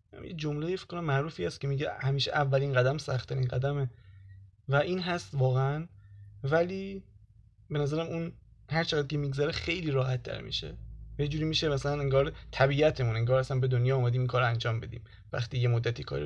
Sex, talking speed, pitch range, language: male, 175 wpm, 120-155 Hz, Persian